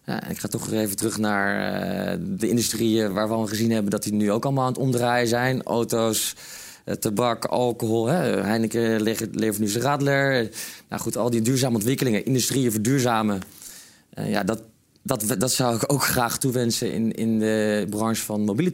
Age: 20-39